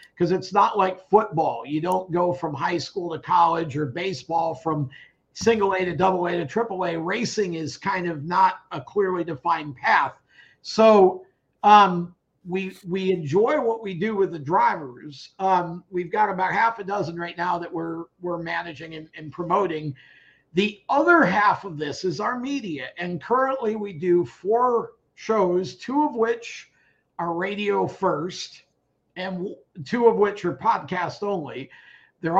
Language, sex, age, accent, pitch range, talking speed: English, male, 50-69, American, 170-205 Hz, 165 wpm